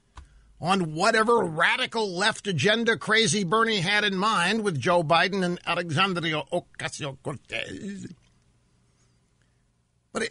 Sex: male